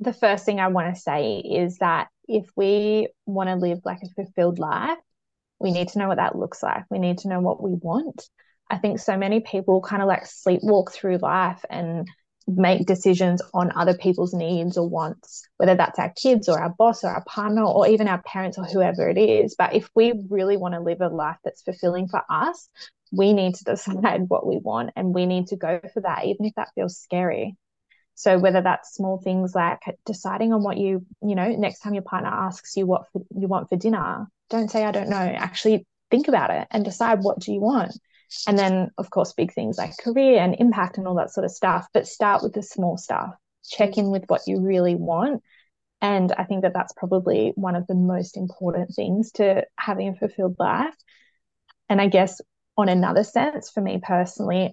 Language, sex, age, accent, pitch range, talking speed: English, female, 20-39, Australian, 180-215 Hz, 215 wpm